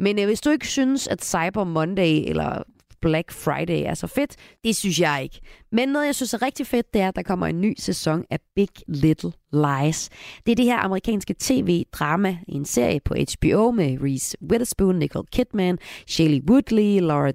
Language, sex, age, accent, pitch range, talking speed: Danish, female, 30-49, native, 145-200 Hz, 195 wpm